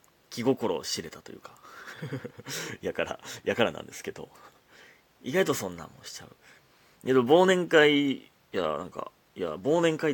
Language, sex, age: Japanese, male, 30-49